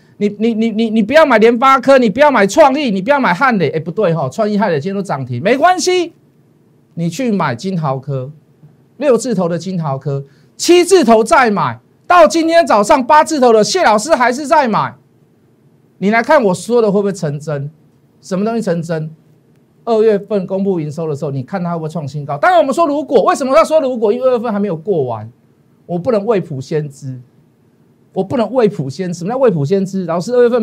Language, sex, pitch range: Chinese, male, 165-250 Hz